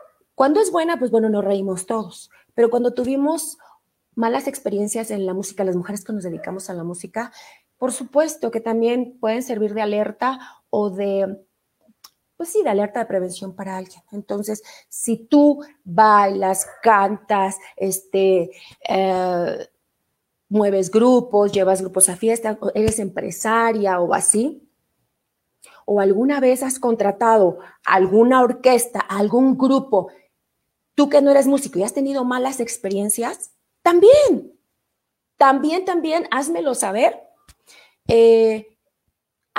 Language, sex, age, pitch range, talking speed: Spanish, female, 30-49, 200-265 Hz, 130 wpm